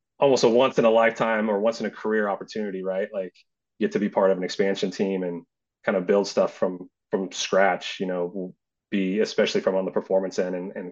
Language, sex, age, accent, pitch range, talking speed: English, male, 30-49, American, 90-100 Hz, 230 wpm